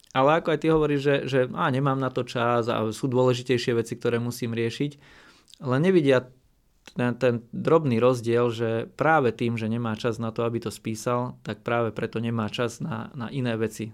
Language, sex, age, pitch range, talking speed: Slovak, male, 20-39, 115-135 Hz, 190 wpm